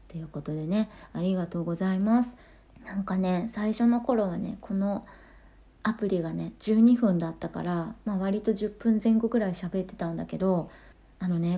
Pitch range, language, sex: 170-220 Hz, Japanese, female